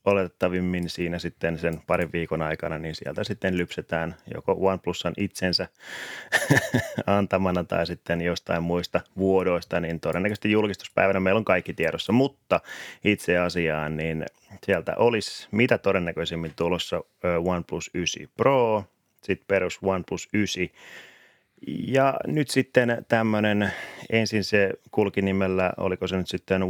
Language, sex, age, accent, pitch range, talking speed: Finnish, male, 30-49, native, 85-100 Hz, 125 wpm